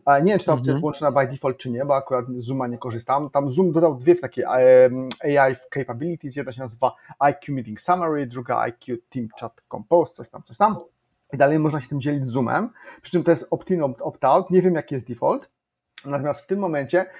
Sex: male